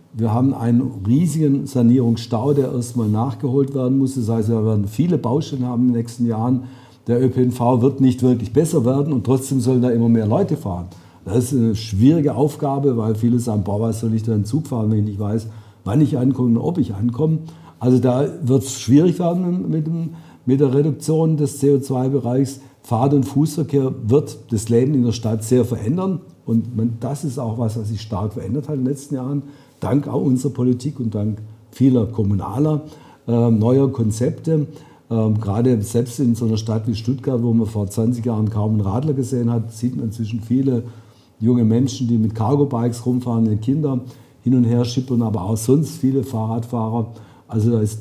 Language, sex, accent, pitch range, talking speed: German, male, German, 115-140 Hz, 195 wpm